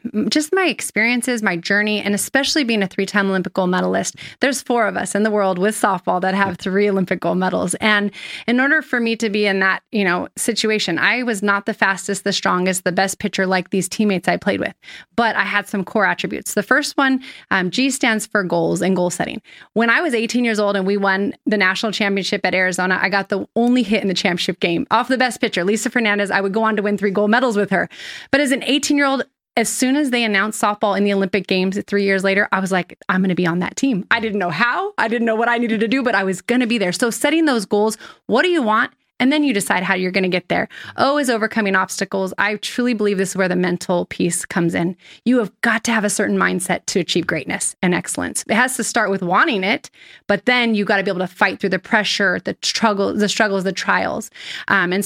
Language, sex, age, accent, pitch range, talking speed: English, female, 20-39, American, 190-235 Hz, 255 wpm